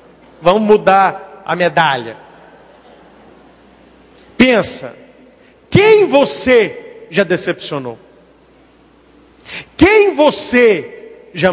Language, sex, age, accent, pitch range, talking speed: Portuguese, male, 50-69, Brazilian, 180-285 Hz, 60 wpm